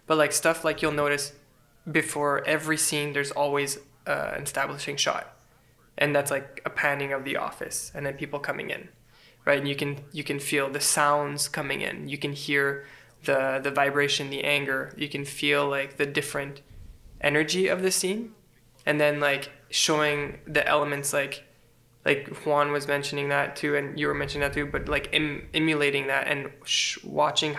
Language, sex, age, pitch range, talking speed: English, male, 20-39, 140-150 Hz, 175 wpm